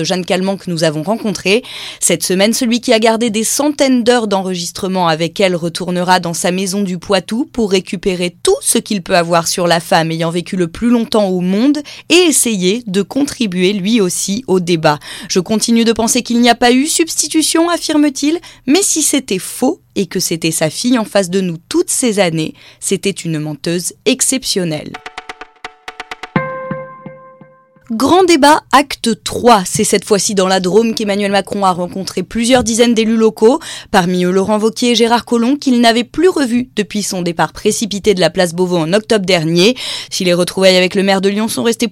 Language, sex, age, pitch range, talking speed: French, female, 20-39, 180-240 Hz, 190 wpm